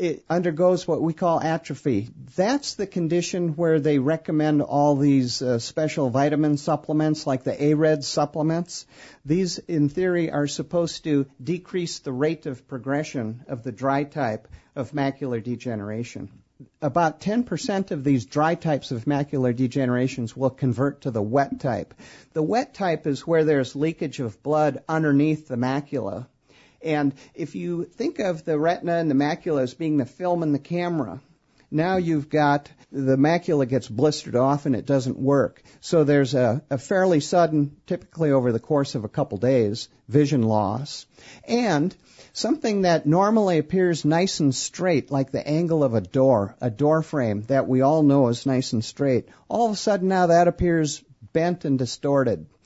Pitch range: 135-165 Hz